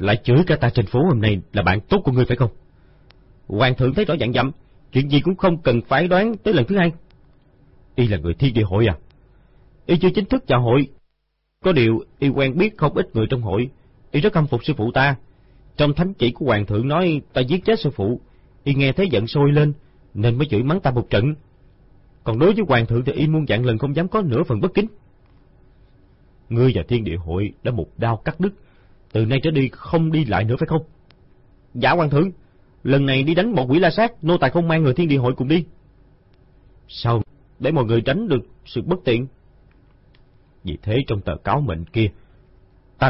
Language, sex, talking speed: Vietnamese, male, 225 wpm